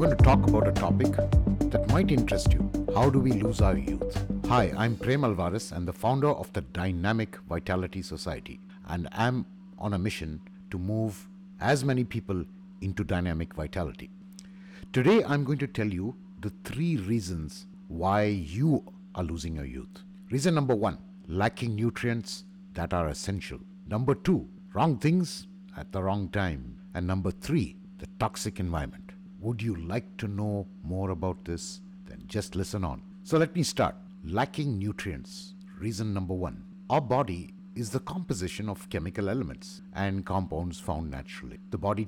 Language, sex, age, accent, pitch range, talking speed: English, male, 60-79, Indian, 95-130 Hz, 160 wpm